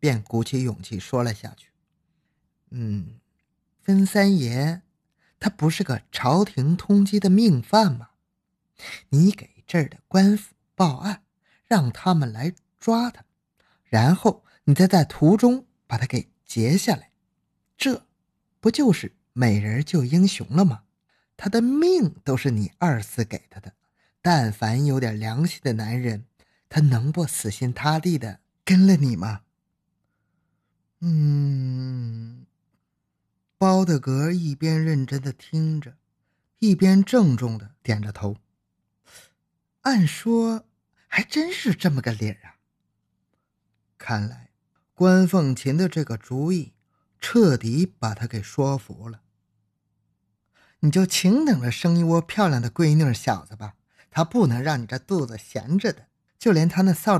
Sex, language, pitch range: male, Chinese, 120-185 Hz